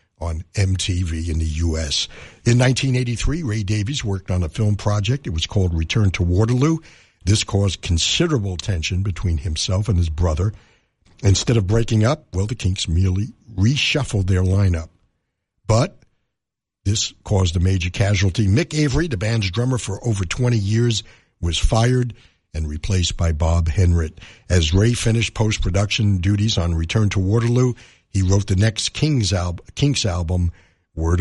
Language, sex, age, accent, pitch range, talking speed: English, male, 60-79, American, 90-115 Hz, 155 wpm